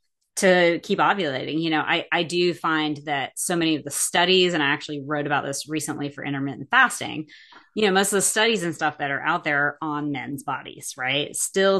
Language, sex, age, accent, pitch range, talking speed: English, female, 30-49, American, 145-185 Hz, 220 wpm